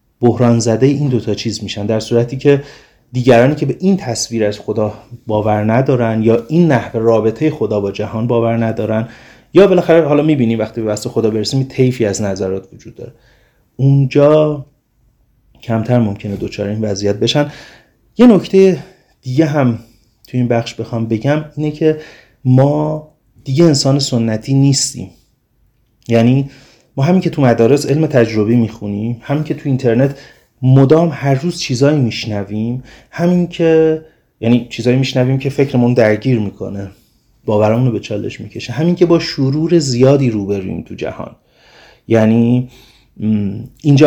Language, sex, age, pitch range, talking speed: Persian, male, 30-49, 110-140 Hz, 145 wpm